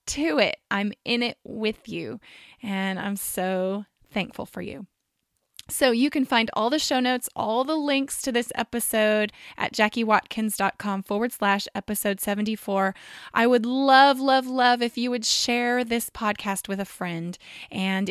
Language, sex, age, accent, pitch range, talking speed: English, female, 20-39, American, 205-245 Hz, 160 wpm